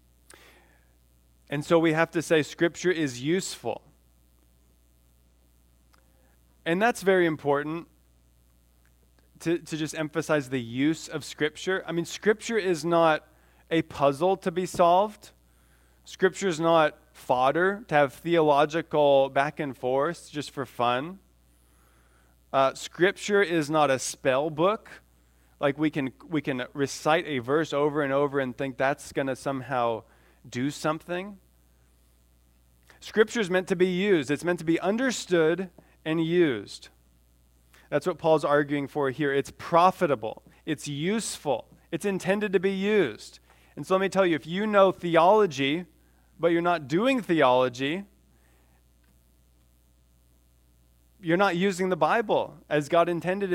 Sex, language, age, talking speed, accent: male, English, 20-39, 135 wpm, American